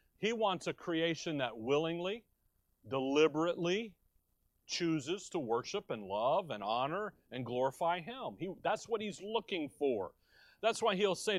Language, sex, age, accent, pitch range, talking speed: English, male, 40-59, American, 135-170 Hz, 140 wpm